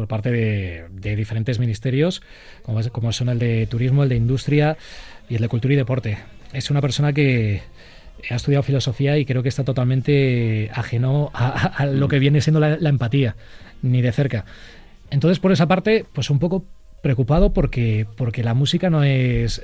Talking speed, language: 185 wpm, Spanish